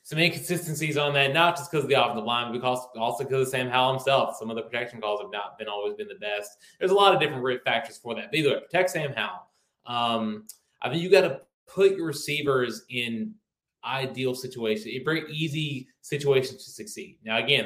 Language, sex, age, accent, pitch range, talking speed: English, male, 20-39, American, 110-145 Hz, 220 wpm